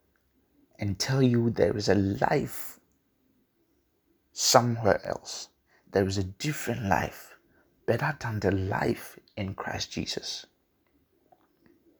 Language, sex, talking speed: English, male, 105 wpm